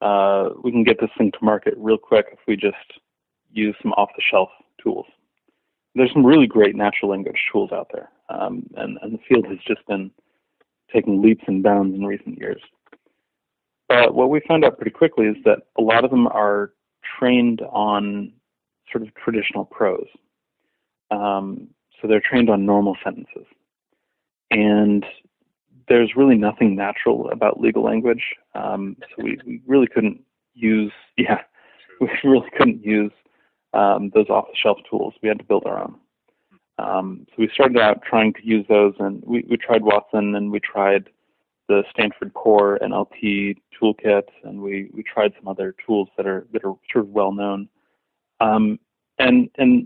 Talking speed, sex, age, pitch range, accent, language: 165 wpm, male, 30-49, 100-120 Hz, American, English